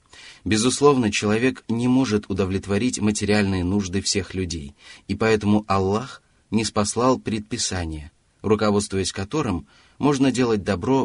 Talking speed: 110 wpm